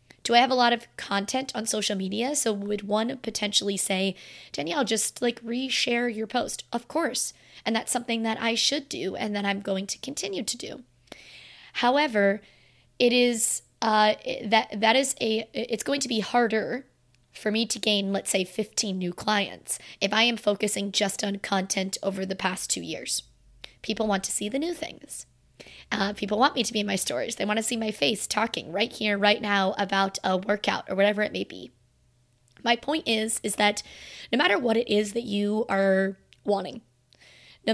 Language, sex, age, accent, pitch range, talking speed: English, female, 20-39, American, 200-240 Hz, 195 wpm